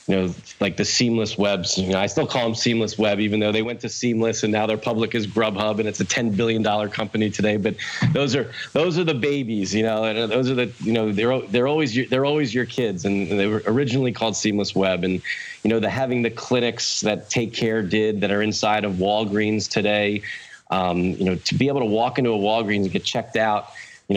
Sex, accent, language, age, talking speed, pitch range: male, American, English, 40-59, 235 wpm, 100-115 Hz